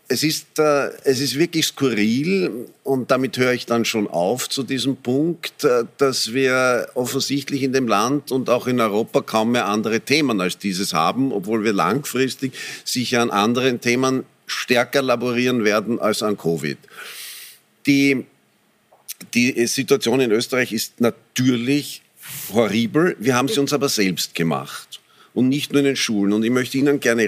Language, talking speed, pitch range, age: German, 160 wpm, 110-140 Hz, 50-69